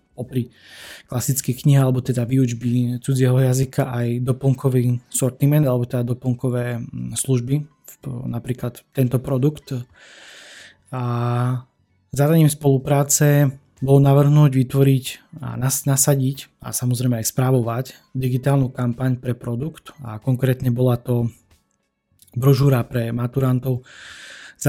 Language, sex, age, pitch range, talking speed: Slovak, male, 20-39, 125-135 Hz, 105 wpm